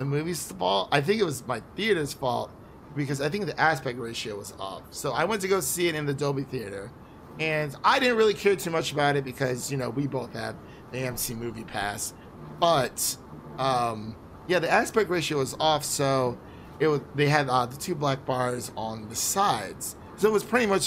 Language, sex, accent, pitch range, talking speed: English, male, American, 125-160 Hz, 215 wpm